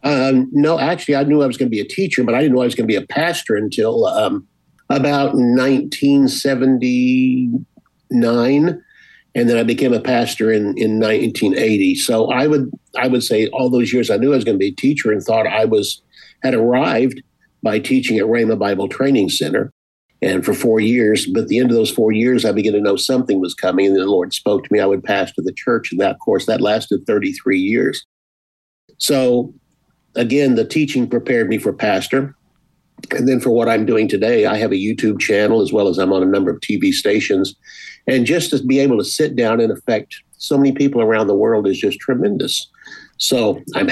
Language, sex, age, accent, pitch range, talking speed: English, male, 50-69, American, 110-145 Hz, 215 wpm